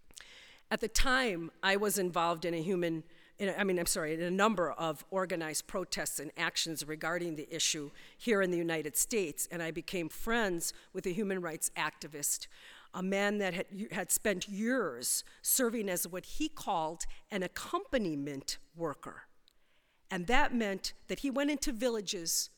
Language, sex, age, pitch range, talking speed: English, female, 50-69, 165-215 Hz, 160 wpm